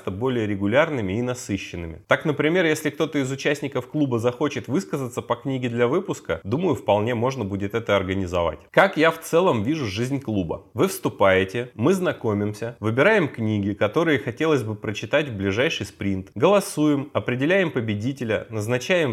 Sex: male